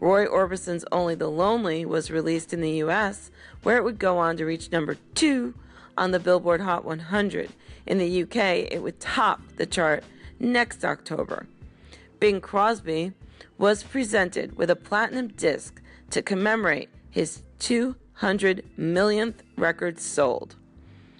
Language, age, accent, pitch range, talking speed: English, 40-59, American, 160-200 Hz, 140 wpm